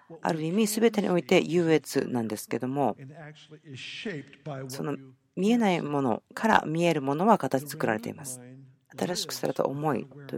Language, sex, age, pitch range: Japanese, female, 50-69, 125-170 Hz